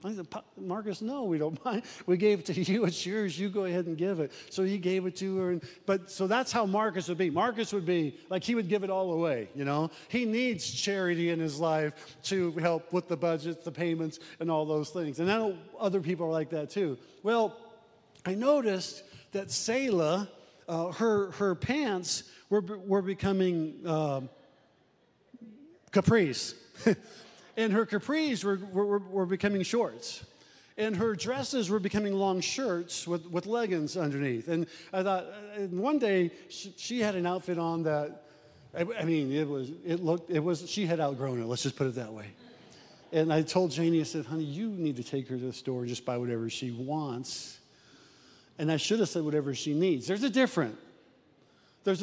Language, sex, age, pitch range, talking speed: English, male, 50-69, 160-205 Hz, 195 wpm